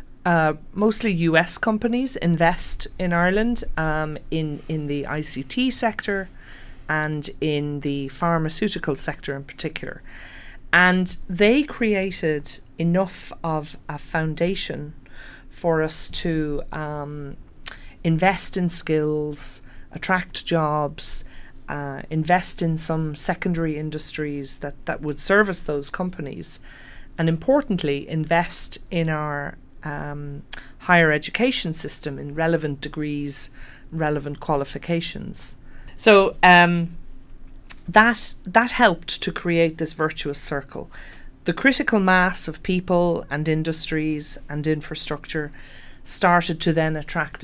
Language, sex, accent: Korean, female, Irish